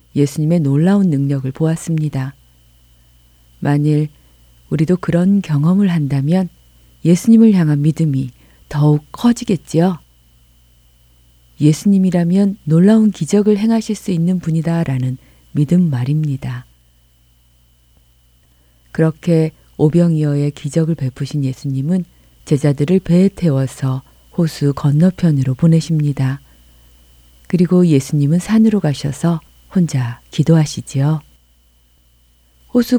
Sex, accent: female, native